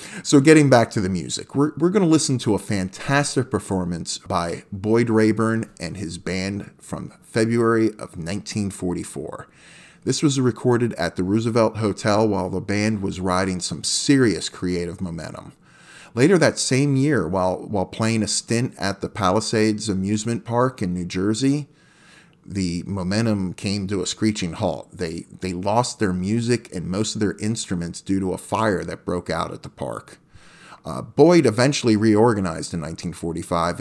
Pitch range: 95-125 Hz